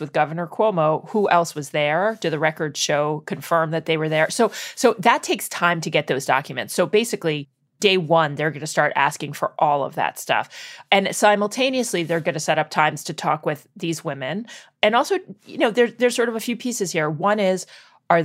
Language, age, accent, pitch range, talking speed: English, 30-49, American, 155-210 Hz, 220 wpm